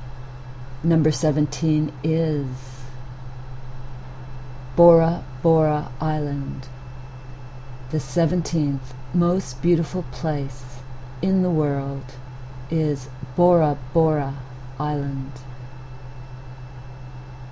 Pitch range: 125-155 Hz